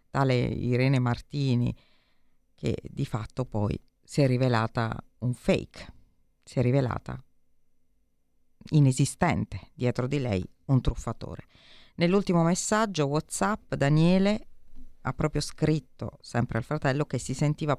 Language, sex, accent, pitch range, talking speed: Italian, female, native, 115-145 Hz, 110 wpm